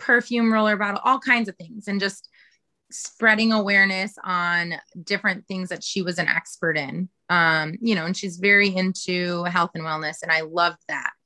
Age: 20-39